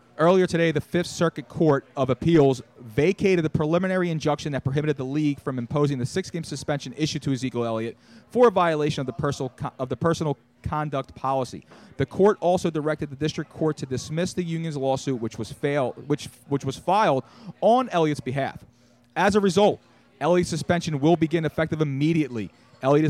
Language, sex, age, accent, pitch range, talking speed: English, male, 30-49, American, 125-160 Hz, 175 wpm